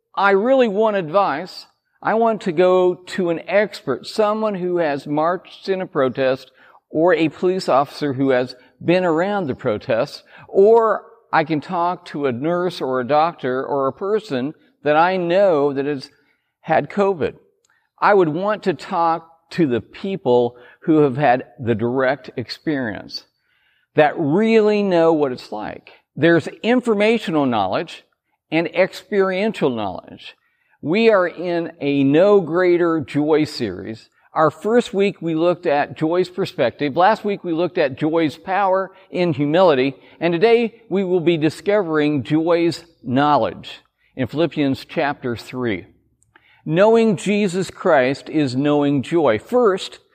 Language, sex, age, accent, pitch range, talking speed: English, male, 50-69, American, 145-195 Hz, 140 wpm